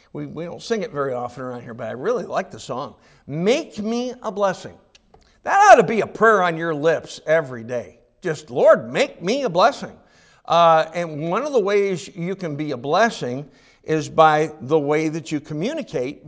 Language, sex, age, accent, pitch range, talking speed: English, male, 60-79, American, 155-205 Hz, 195 wpm